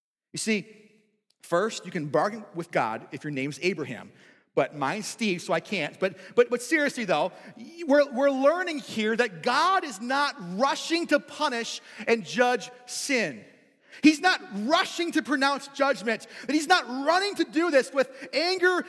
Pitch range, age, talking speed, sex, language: 235-315 Hz, 30-49, 165 wpm, male, English